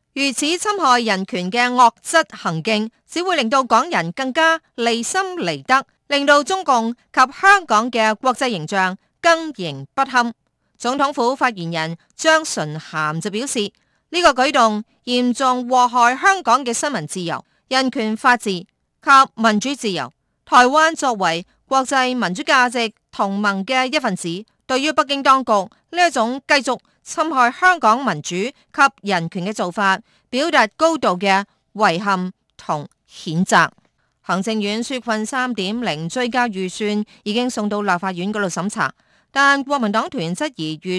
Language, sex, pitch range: Chinese, female, 190-260 Hz